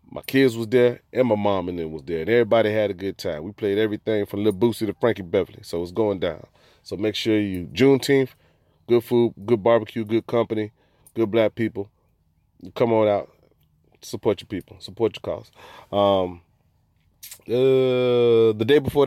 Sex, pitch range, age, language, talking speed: male, 90-115 Hz, 30-49, English, 185 wpm